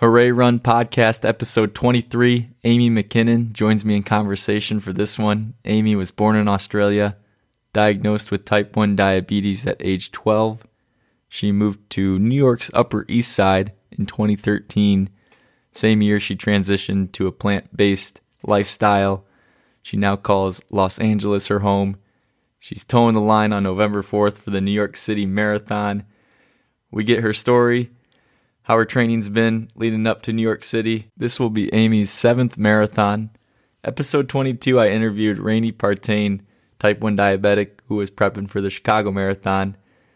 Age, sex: 20-39, male